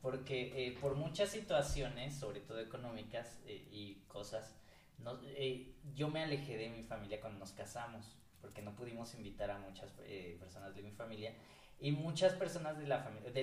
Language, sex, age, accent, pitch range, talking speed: Spanish, male, 20-39, Mexican, 105-140 Hz, 160 wpm